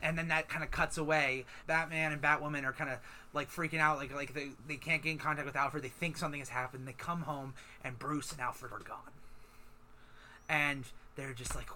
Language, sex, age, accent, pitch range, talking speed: English, male, 30-49, American, 130-150 Hz, 225 wpm